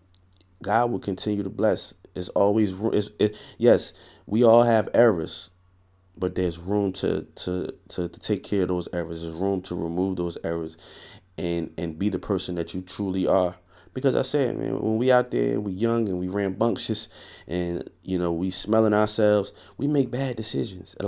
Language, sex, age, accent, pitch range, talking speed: English, male, 30-49, American, 85-105 Hz, 185 wpm